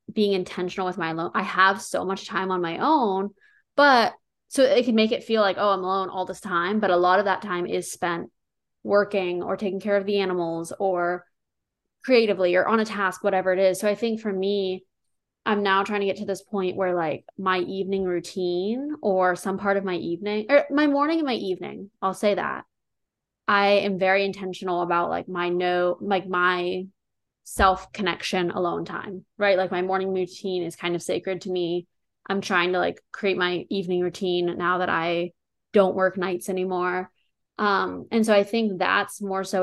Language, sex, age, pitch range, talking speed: English, female, 20-39, 180-205 Hz, 200 wpm